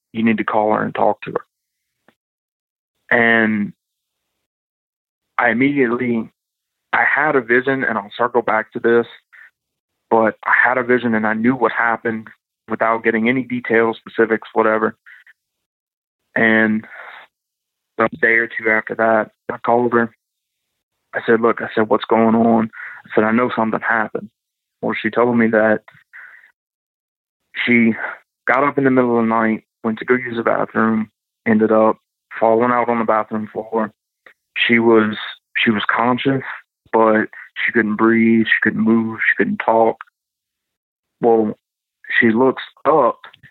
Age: 30-49